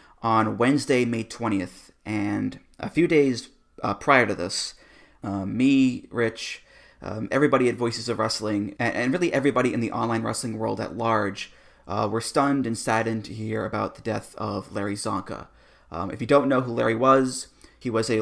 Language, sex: English, male